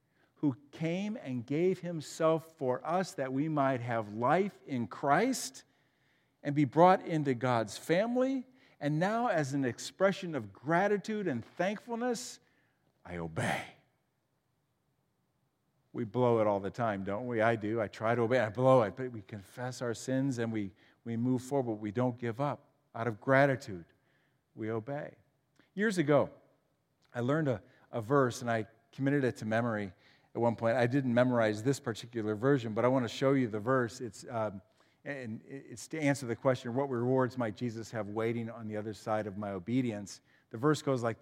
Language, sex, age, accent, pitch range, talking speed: English, male, 50-69, American, 115-155 Hz, 180 wpm